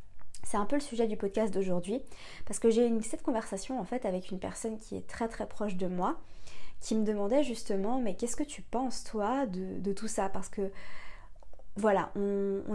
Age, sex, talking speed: 20-39, female, 205 wpm